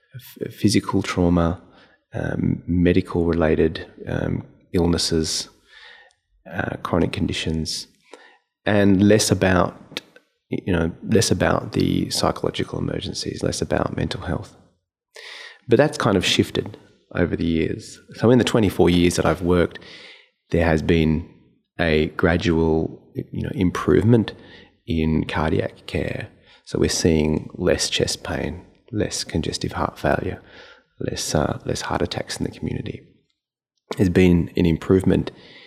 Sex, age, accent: male, 30-49, Australian